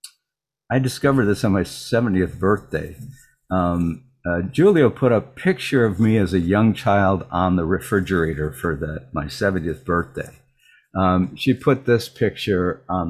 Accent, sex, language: American, male, English